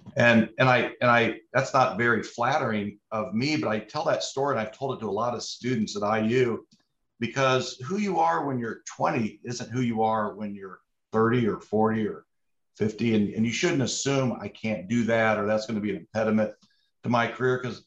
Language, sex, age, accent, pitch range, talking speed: English, male, 50-69, American, 110-130 Hz, 220 wpm